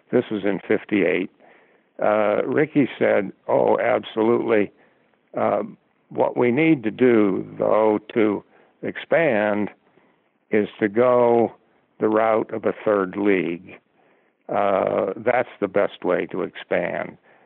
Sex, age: male, 60-79